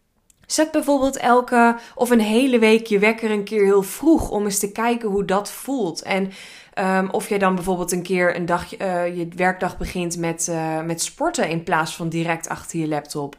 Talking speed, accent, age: 185 wpm, Dutch, 20-39